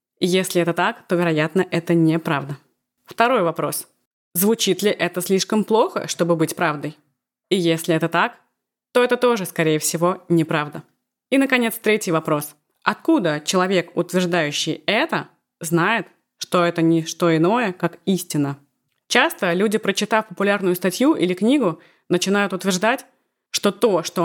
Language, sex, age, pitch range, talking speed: Russian, female, 20-39, 170-215 Hz, 135 wpm